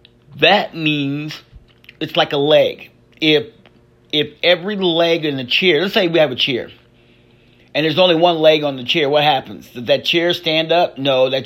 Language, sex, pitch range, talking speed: English, male, 130-165 Hz, 190 wpm